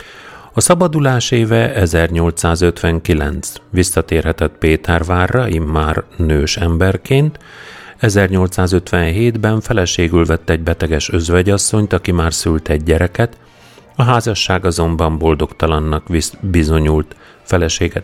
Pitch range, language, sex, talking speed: 80-110 Hz, Hungarian, male, 85 wpm